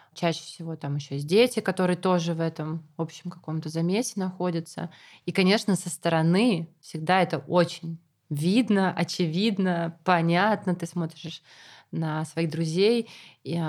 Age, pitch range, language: 20-39, 165-185 Hz, Russian